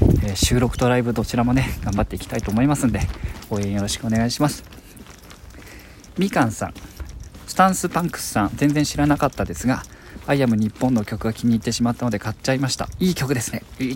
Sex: male